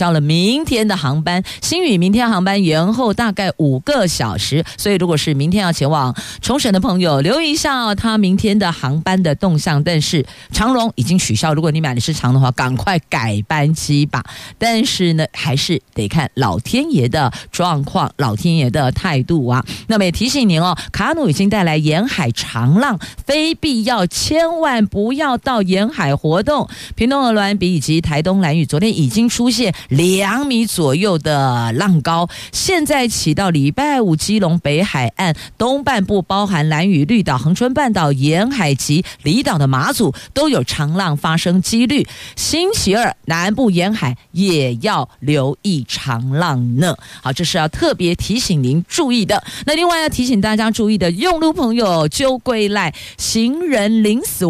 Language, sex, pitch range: Chinese, female, 150-230 Hz